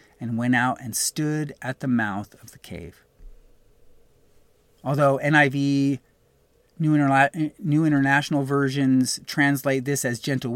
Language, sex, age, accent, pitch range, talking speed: English, male, 30-49, American, 125-155 Hz, 120 wpm